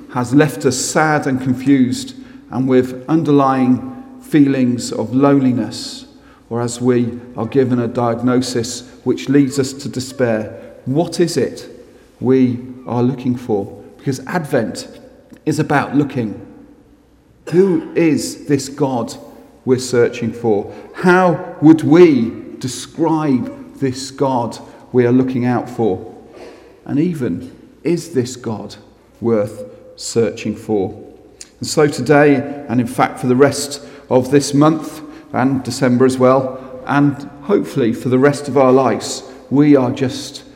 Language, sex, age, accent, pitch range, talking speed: English, male, 40-59, British, 125-155 Hz, 130 wpm